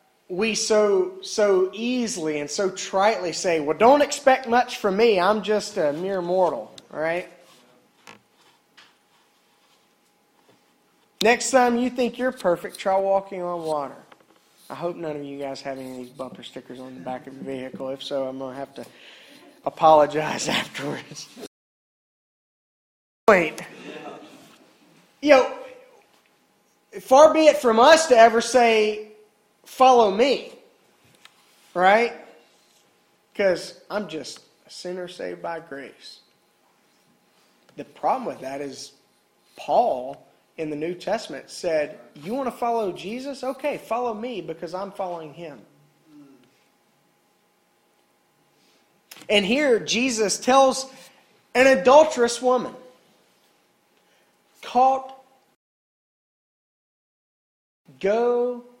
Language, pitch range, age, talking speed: English, 160-250 Hz, 30-49, 110 wpm